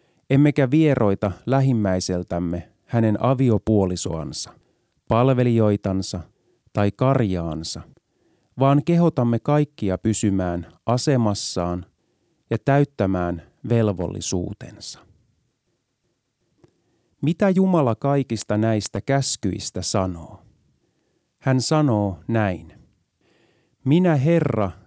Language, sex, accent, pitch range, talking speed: Finnish, male, native, 95-140 Hz, 65 wpm